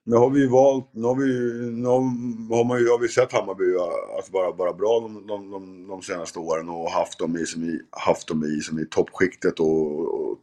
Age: 50-69